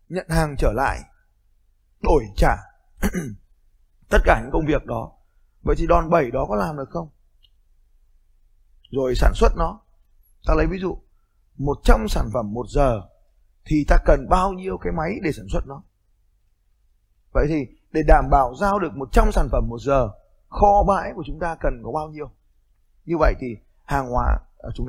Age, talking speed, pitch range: 20-39, 175 wpm, 105-175 Hz